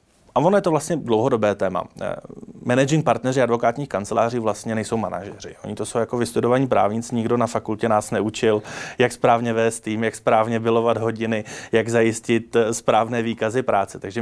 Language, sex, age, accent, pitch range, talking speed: Czech, male, 20-39, native, 110-130 Hz, 165 wpm